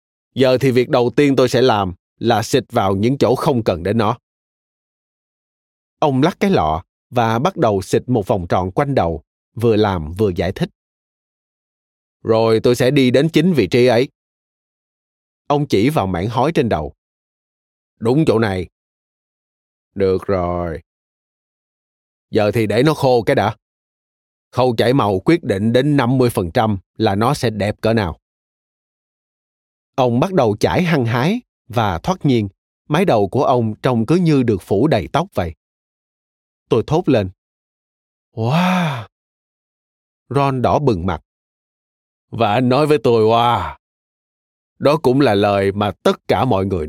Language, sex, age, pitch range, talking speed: Vietnamese, male, 20-39, 90-125 Hz, 155 wpm